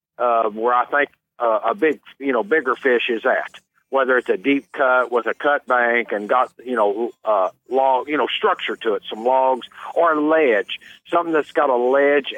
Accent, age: American, 50-69